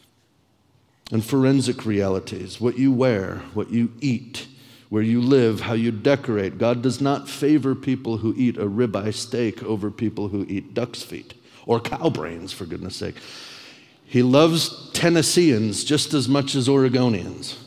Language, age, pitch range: English, 50-69, 105-130 Hz